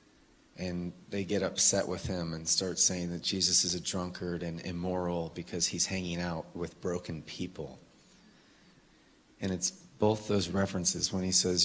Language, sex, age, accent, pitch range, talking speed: English, male, 30-49, American, 90-100 Hz, 160 wpm